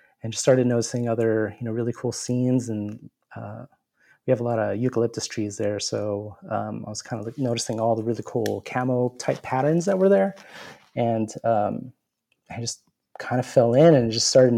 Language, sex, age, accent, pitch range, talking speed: English, male, 30-49, American, 110-125 Hz, 195 wpm